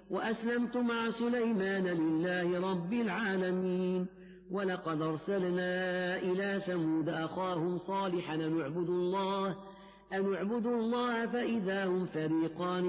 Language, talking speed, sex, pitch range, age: Arabic, 90 wpm, female, 180-230 Hz, 50-69